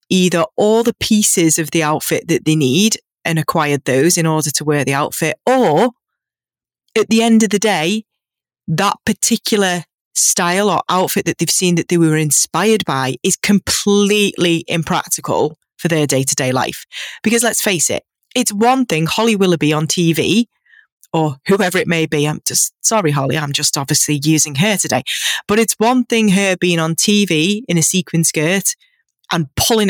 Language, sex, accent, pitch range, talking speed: English, female, British, 160-215 Hz, 175 wpm